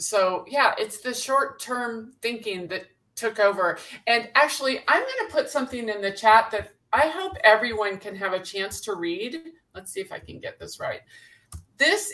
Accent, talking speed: American, 190 wpm